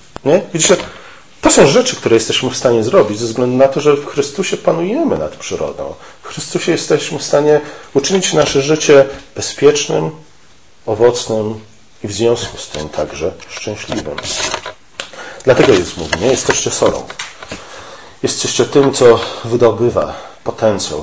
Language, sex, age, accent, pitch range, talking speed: Polish, male, 40-59, native, 105-150 Hz, 135 wpm